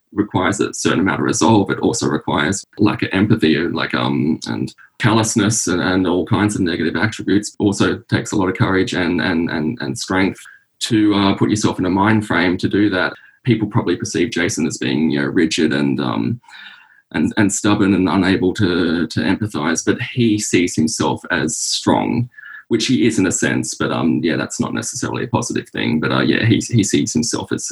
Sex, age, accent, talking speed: male, 20-39, Australian, 200 wpm